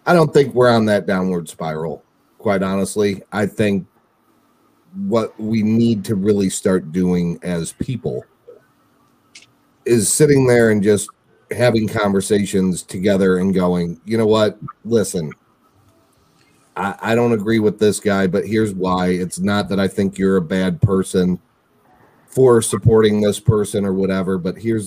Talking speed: 150 wpm